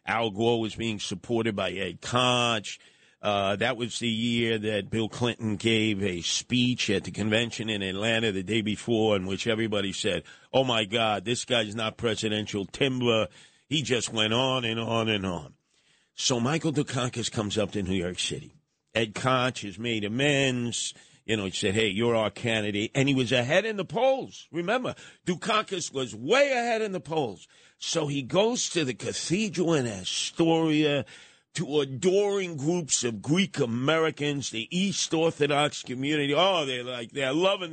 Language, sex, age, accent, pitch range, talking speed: English, male, 50-69, American, 110-145 Hz, 170 wpm